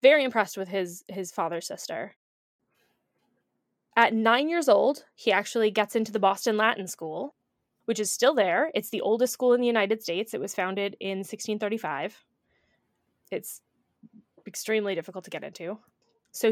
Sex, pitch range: female, 200-255 Hz